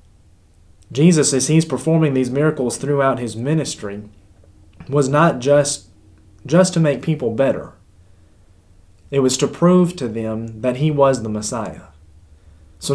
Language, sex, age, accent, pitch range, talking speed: English, male, 30-49, American, 115-150 Hz, 135 wpm